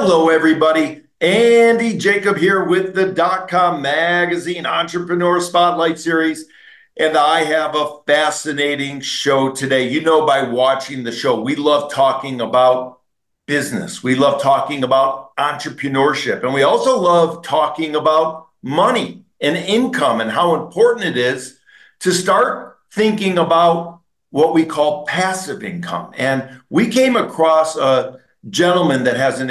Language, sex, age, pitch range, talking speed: English, male, 50-69, 140-185 Hz, 135 wpm